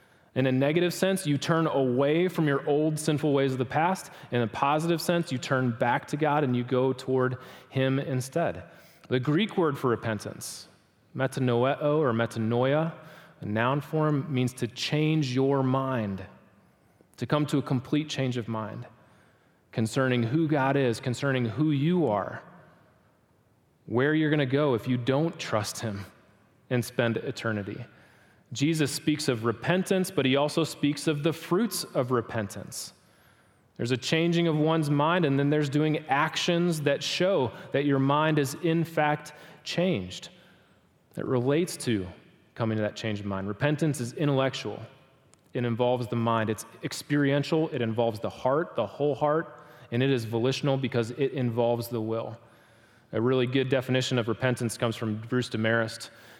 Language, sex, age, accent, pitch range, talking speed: English, male, 30-49, American, 120-150 Hz, 160 wpm